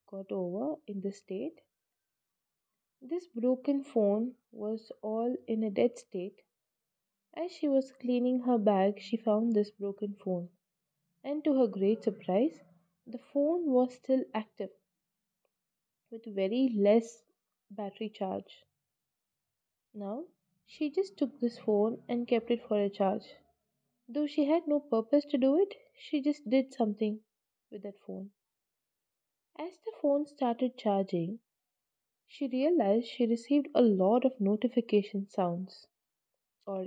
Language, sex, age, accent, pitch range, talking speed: English, female, 20-39, Indian, 200-280 Hz, 135 wpm